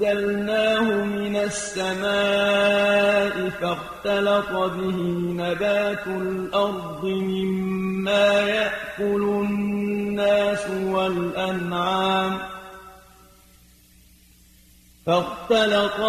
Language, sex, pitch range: Arabic, male, 190-205 Hz